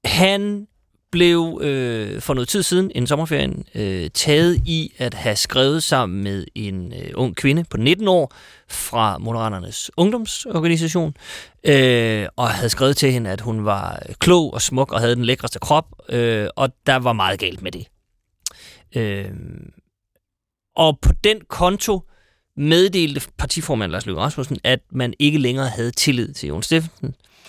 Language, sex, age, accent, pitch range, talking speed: Danish, male, 30-49, native, 110-170 Hz, 155 wpm